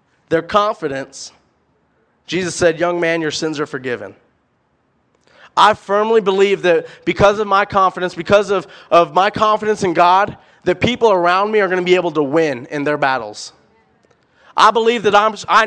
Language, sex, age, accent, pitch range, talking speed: English, male, 20-39, American, 180-225 Hz, 170 wpm